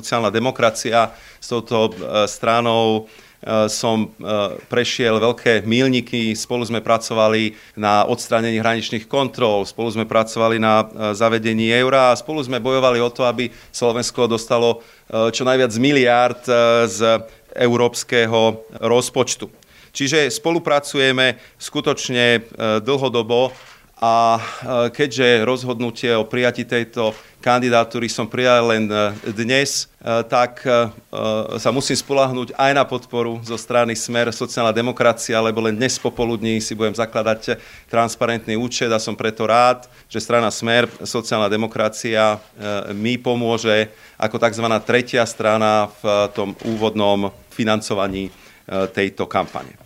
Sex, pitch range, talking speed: male, 110-125 Hz, 115 wpm